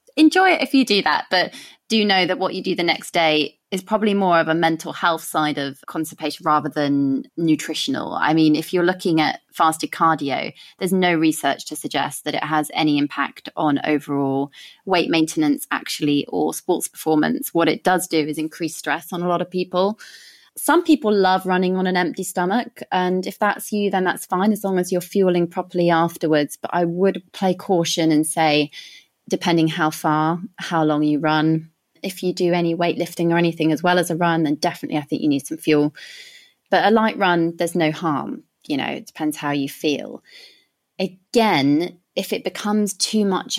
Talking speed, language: 195 wpm, English